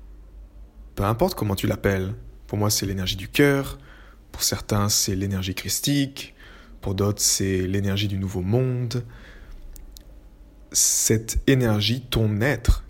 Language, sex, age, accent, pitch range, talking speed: French, male, 20-39, French, 95-115 Hz, 125 wpm